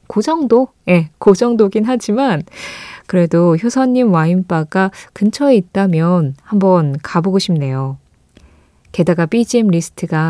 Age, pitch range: 20-39, 170-245 Hz